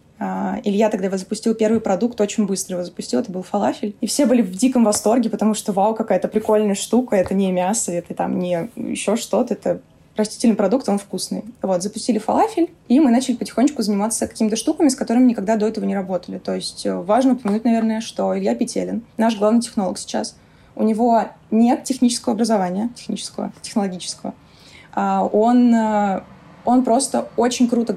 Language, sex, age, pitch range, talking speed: Russian, female, 20-39, 200-235 Hz, 175 wpm